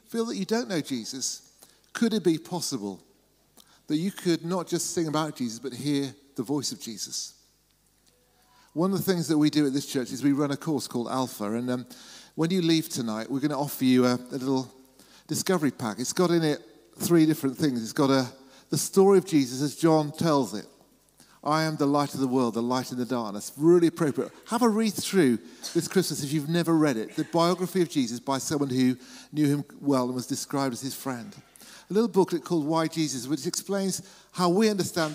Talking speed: 215 wpm